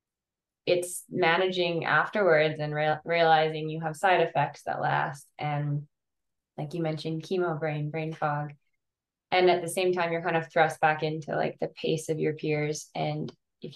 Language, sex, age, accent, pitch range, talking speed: English, female, 20-39, American, 150-170 Hz, 165 wpm